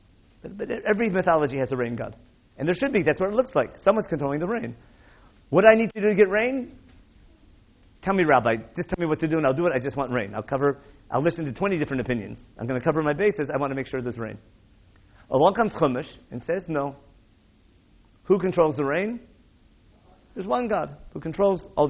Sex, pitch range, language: male, 110-170 Hz, English